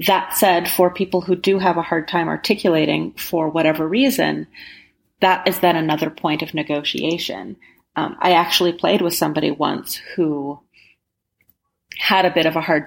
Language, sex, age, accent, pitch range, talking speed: English, female, 30-49, American, 155-185 Hz, 165 wpm